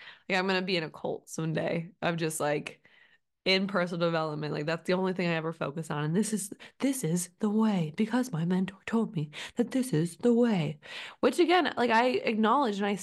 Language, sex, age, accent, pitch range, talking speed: English, female, 20-39, American, 180-235 Hz, 215 wpm